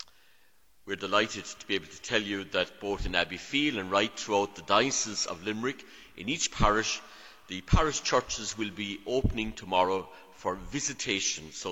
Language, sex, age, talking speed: English, male, 60-79, 170 wpm